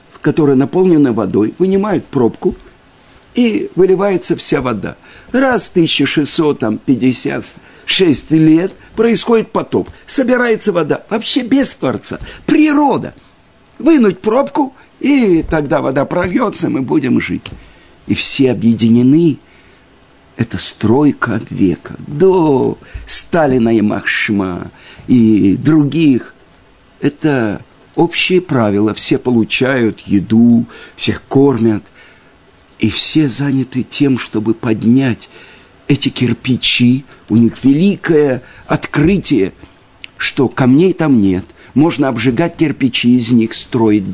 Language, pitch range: Russian, 115-175 Hz